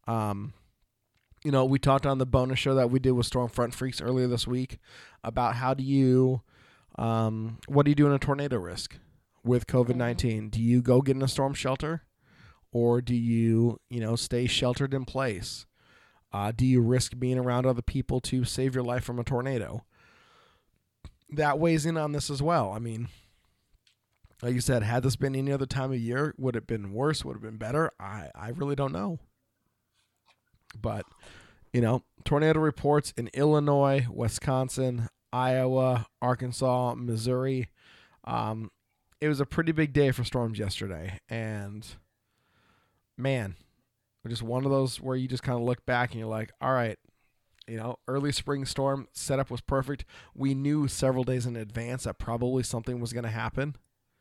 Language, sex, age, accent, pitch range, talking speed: English, male, 20-39, American, 115-135 Hz, 175 wpm